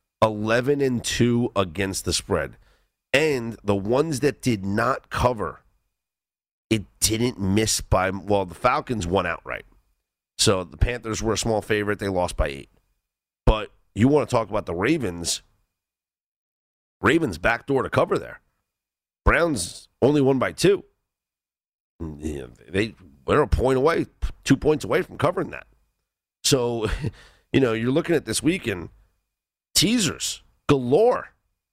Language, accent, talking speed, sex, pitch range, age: English, American, 130 wpm, male, 90-125 Hz, 40-59